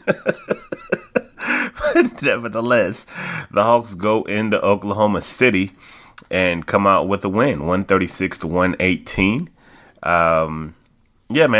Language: English